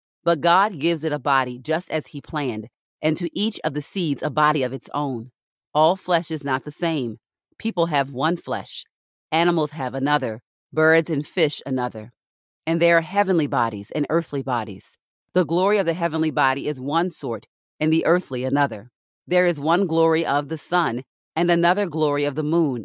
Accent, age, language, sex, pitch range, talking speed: American, 40-59, English, female, 130-170 Hz, 190 wpm